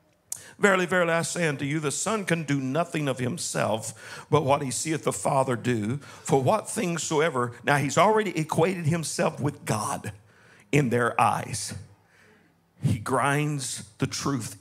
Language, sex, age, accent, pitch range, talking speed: English, male, 50-69, American, 135-205 Hz, 155 wpm